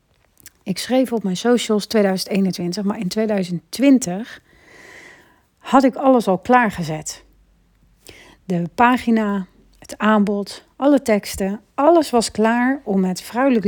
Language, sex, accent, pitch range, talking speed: Dutch, female, Dutch, 190-250 Hz, 115 wpm